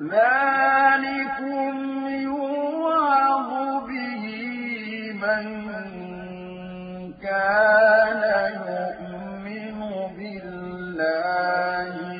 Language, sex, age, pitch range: Arabic, male, 50-69, 180-240 Hz